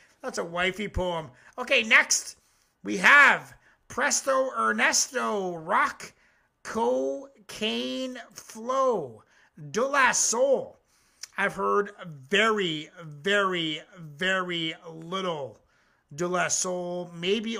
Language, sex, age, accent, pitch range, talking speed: English, male, 30-49, American, 165-225 Hz, 90 wpm